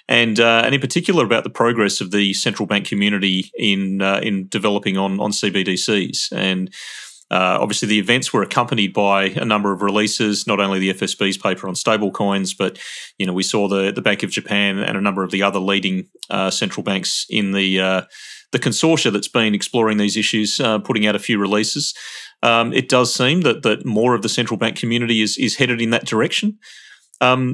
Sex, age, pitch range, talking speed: male, 30-49, 100-120 Hz, 205 wpm